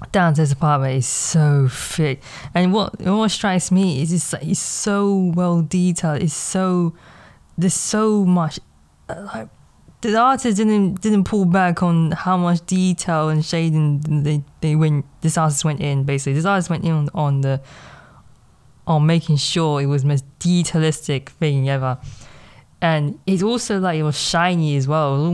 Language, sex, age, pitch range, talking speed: English, female, 20-39, 145-180 Hz, 165 wpm